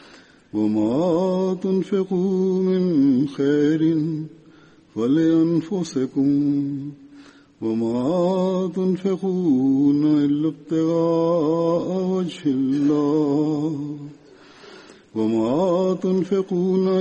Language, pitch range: Swahili, 145-185 Hz